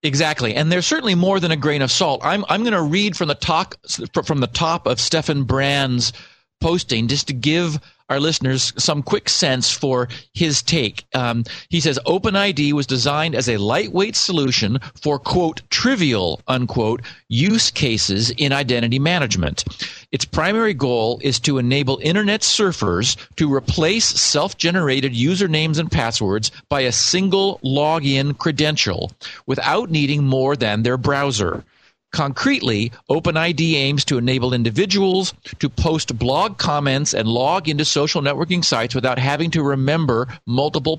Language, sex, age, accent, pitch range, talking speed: English, male, 40-59, American, 125-165 Hz, 150 wpm